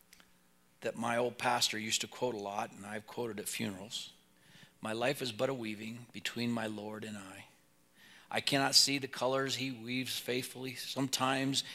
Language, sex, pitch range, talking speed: English, male, 100-135 Hz, 175 wpm